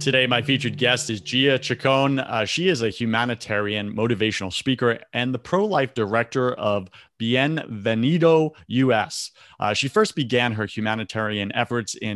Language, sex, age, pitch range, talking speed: English, male, 30-49, 110-135 Hz, 145 wpm